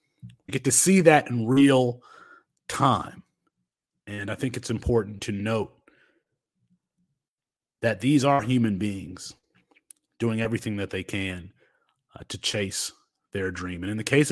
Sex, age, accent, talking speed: male, 30-49, American, 145 wpm